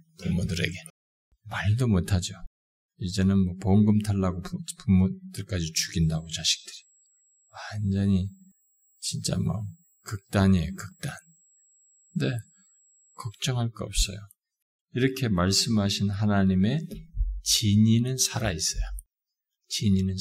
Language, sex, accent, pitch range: Korean, male, native, 95-145 Hz